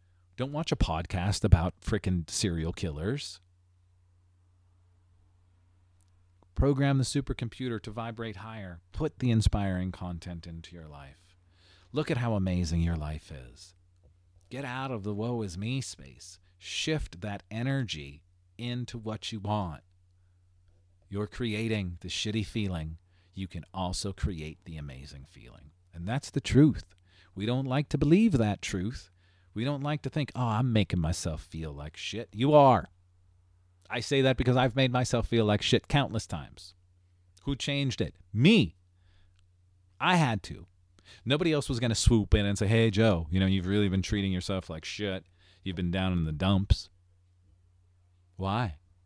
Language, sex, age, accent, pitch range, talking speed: English, male, 40-59, American, 90-110 Hz, 155 wpm